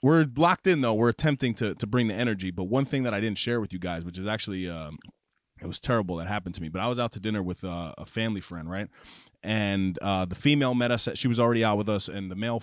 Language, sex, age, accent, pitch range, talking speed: English, male, 30-49, American, 95-120 Hz, 285 wpm